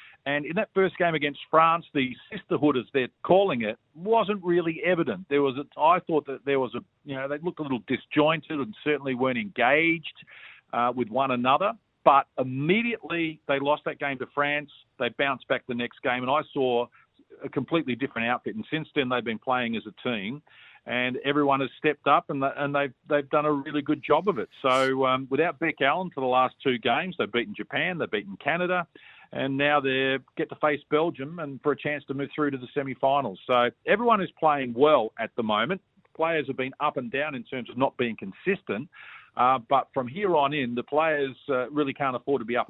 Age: 50-69